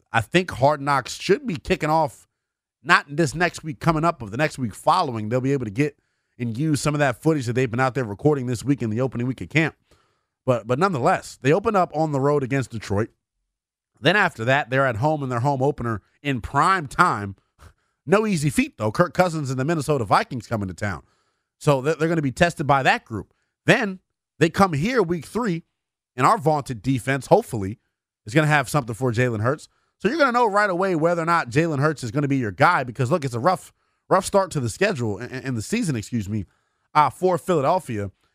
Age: 30-49